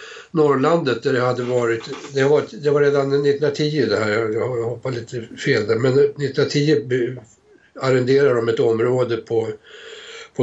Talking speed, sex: 140 wpm, male